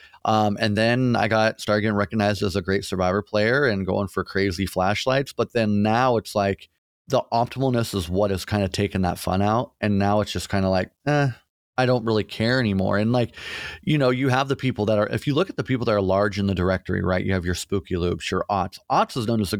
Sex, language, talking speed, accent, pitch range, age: male, English, 250 wpm, American, 100-120 Hz, 30-49